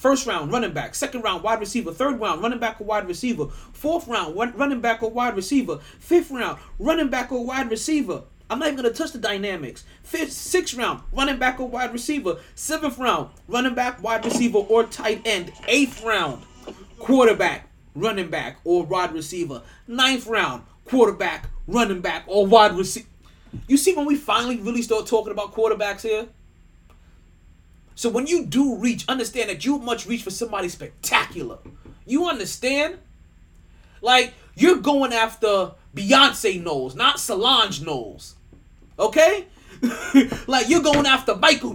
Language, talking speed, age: English, 160 wpm, 30-49